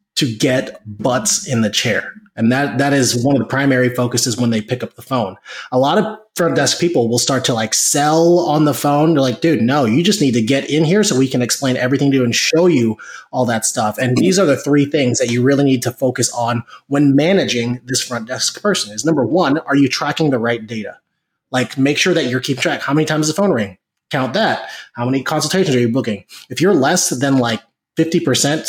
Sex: male